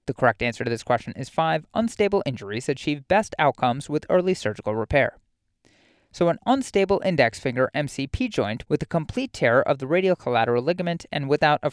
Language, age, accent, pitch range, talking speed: English, 30-49, American, 130-175 Hz, 185 wpm